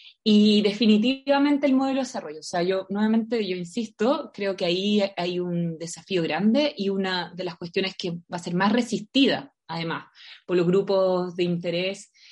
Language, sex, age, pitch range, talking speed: Spanish, female, 20-39, 175-230 Hz, 175 wpm